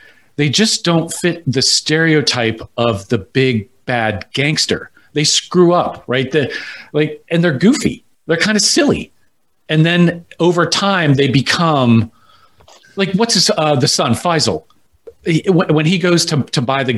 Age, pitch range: 40-59, 125-175 Hz